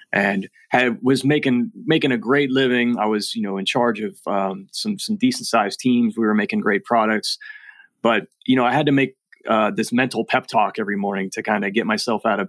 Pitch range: 105-135 Hz